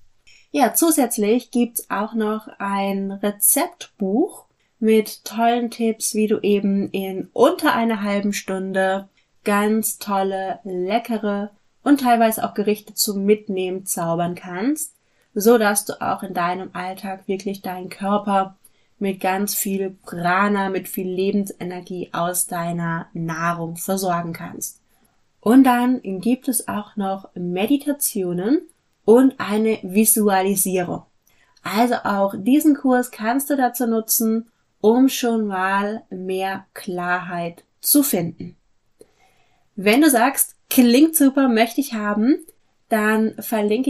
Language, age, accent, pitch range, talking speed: German, 20-39, German, 190-240 Hz, 120 wpm